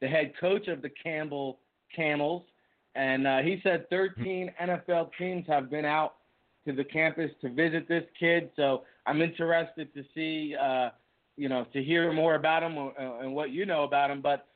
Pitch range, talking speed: 145-170 Hz, 180 wpm